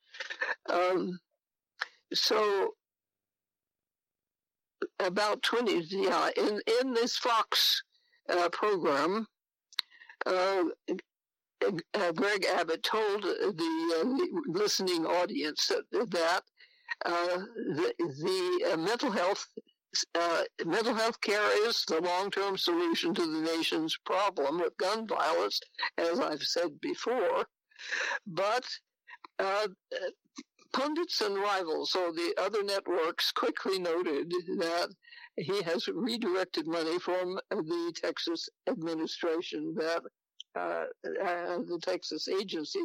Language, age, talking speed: English, 60-79, 105 wpm